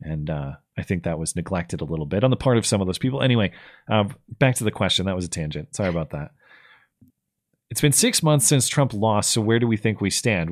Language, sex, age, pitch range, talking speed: English, male, 30-49, 105-130 Hz, 255 wpm